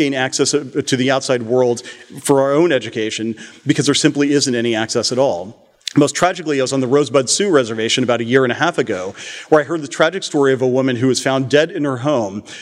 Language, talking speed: English, 240 wpm